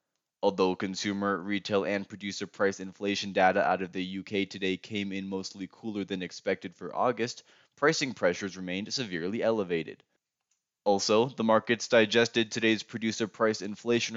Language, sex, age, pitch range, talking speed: English, male, 20-39, 95-110 Hz, 145 wpm